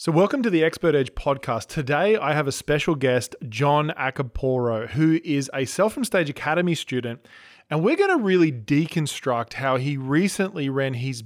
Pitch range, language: 125-160 Hz, English